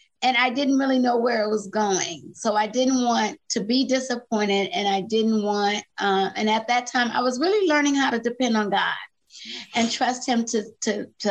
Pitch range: 205-250 Hz